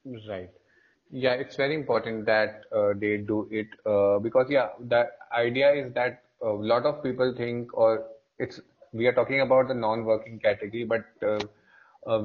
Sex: male